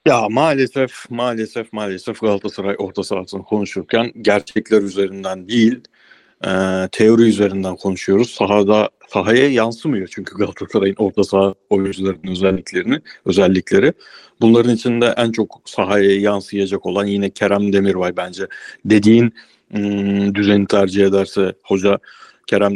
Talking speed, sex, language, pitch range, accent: 110 wpm, male, Turkish, 100-115 Hz, native